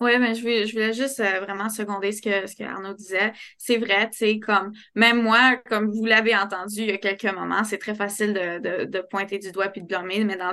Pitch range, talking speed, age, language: 195-225 Hz, 250 wpm, 20-39, French